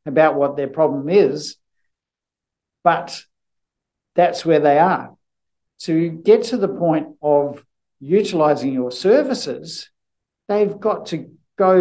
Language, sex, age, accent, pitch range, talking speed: English, male, 60-79, Australian, 145-180 Hz, 115 wpm